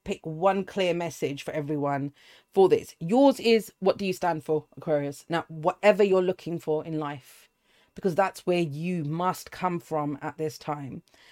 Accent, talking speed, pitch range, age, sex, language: British, 175 wpm, 155-210 Hz, 40-59, female, English